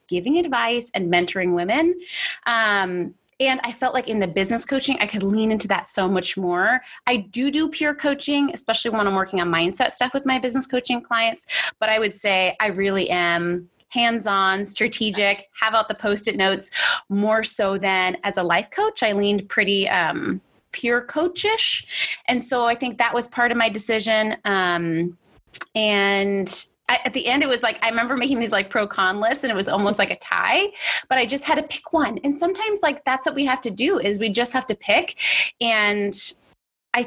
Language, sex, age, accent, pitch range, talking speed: English, female, 30-49, American, 205-270 Hz, 205 wpm